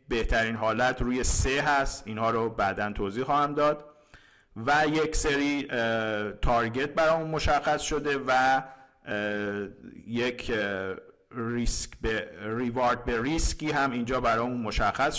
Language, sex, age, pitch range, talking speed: Persian, male, 50-69, 110-140 Hz, 125 wpm